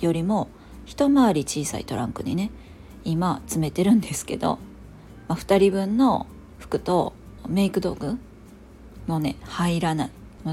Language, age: Japanese, 40-59